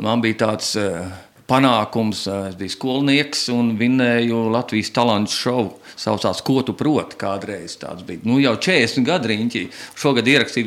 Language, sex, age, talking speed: English, male, 40-59, 165 wpm